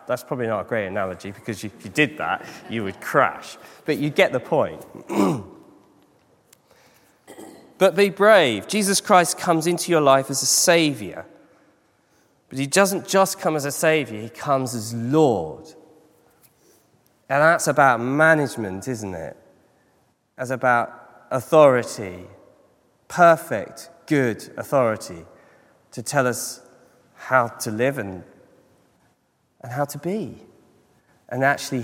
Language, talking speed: English, 130 wpm